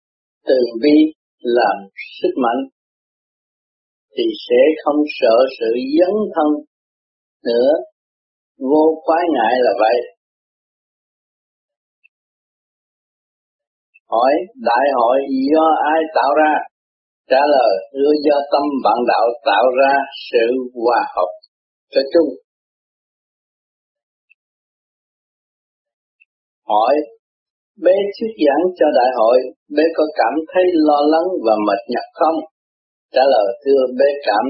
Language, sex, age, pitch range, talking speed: Vietnamese, male, 30-49, 135-185 Hz, 105 wpm